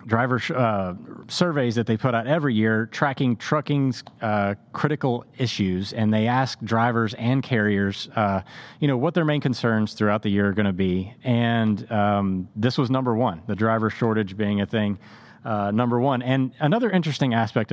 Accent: American